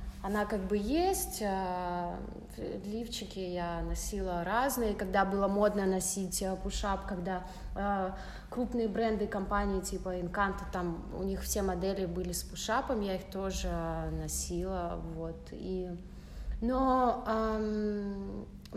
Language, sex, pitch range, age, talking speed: Russian, female, 180-215 Hz, 20-39, 115 wpm